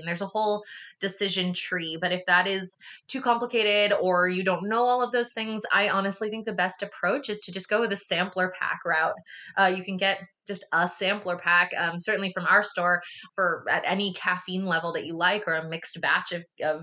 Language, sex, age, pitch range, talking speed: English, female, 20-39, 175-220 Hz, 220 wpm